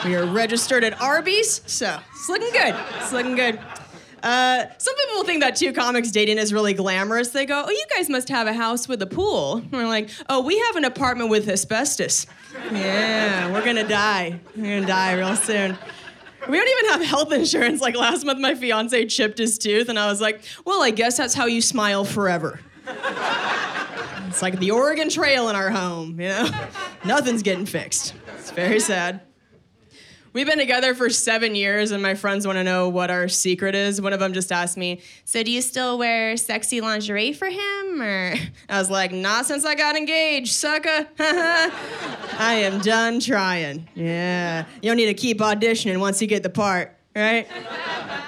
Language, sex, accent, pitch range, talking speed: English, female, American, 200-255 Hz, 190 wpm